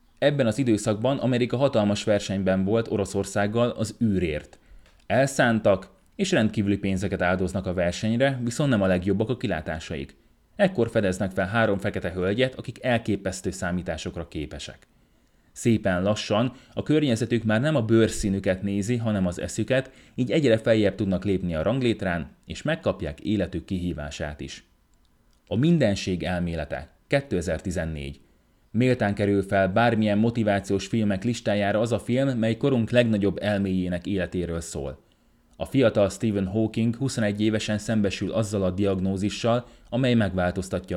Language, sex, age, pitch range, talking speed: Hungarian, male, 30-49, 90-115 Hz, 130 wpm